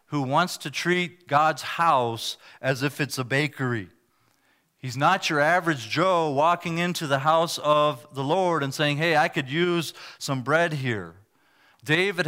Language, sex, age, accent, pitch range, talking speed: English, male, 40-59, American, 130-165 Hz, 160 wpm